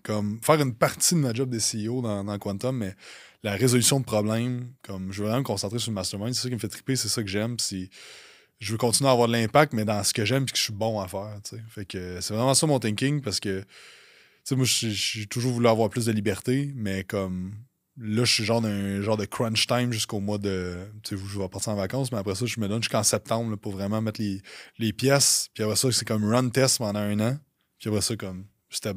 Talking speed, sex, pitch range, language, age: 255 wpm, male, 105-125 Hz, French, 20-39